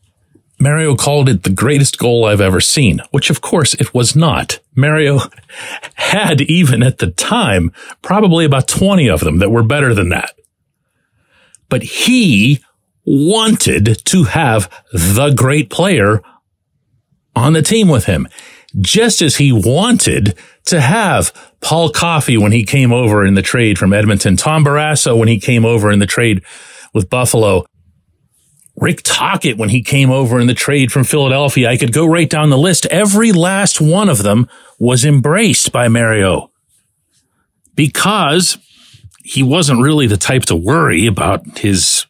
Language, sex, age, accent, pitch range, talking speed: English, male, 40-59, American, 110-155 Hz, 155 wpm